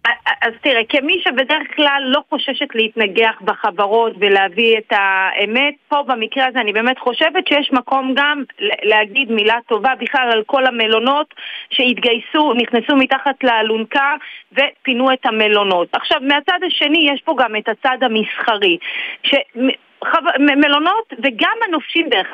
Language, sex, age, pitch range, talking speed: Hebrew, female, 30-49, 225-290 Hz, 135 wpm